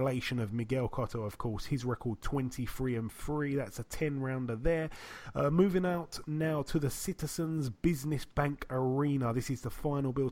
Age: 30-49